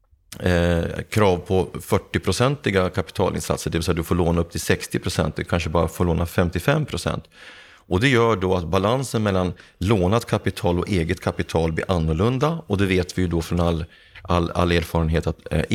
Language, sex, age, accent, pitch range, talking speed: Swedish, male, 30-49, native, 85-100 Hz, 190 wpm